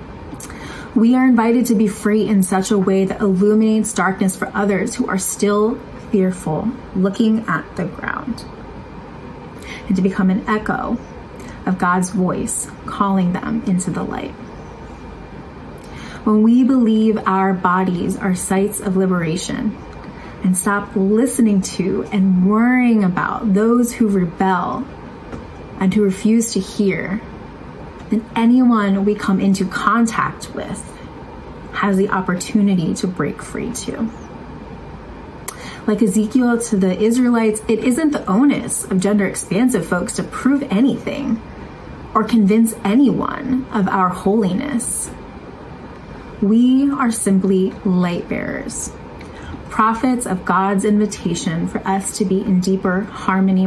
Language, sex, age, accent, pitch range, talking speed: English, female, 30-49, American, 190-230 Hz, 125 wpm